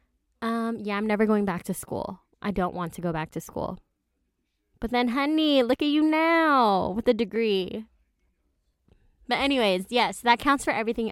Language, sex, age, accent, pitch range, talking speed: English, female, 20-39, American, 185-235 Hz, 180 wpm